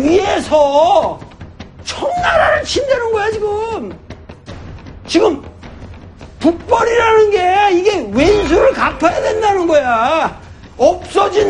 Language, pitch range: Korean, 245-350 Hz